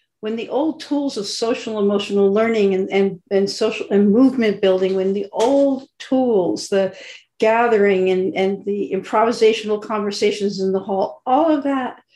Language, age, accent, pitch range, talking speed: English, 50-69, American, 195-235 Hz, 160 wpm